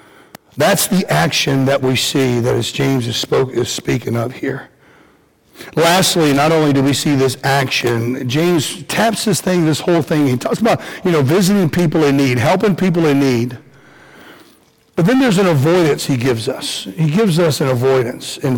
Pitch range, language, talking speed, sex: 135-180 Hz, English, 180 wpm, male